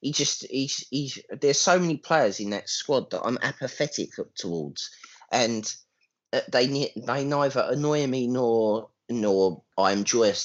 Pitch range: 110-175 Hz